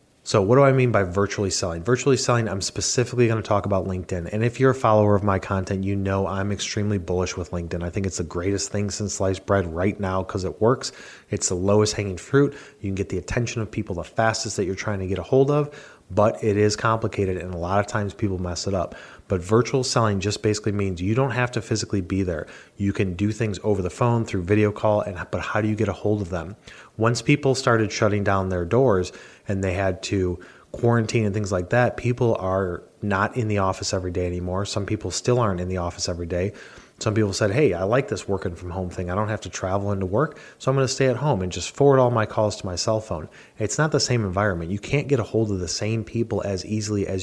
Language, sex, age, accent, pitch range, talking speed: English, male, 30-49, American, 95-110 Hz, 255 wpm